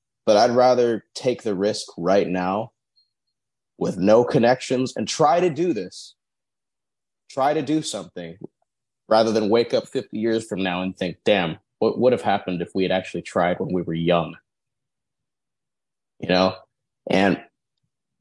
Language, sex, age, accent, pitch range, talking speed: English, male, 30-49, American, 90-120 Hz, 155 wpm